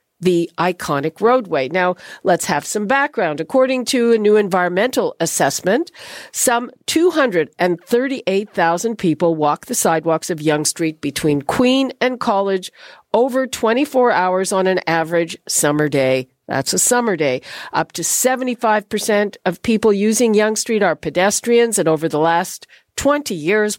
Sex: female